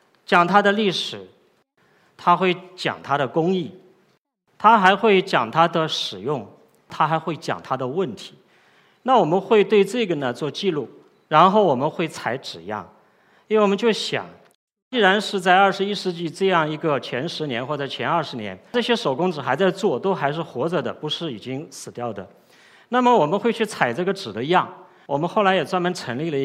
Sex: male